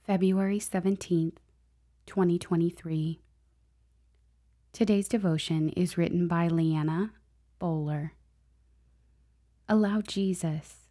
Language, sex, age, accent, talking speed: English, female, 20-39, American, 65 wpm